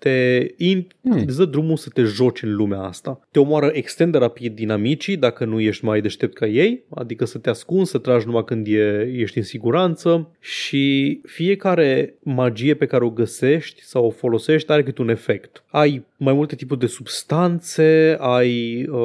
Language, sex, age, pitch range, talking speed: Romanian, male, 20-39, 120-150 Hz, 180 wpm